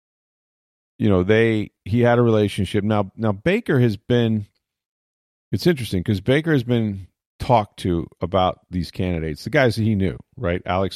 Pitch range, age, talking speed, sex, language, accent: 85-110 Hz, 40-59, 165 wpm, male, English, American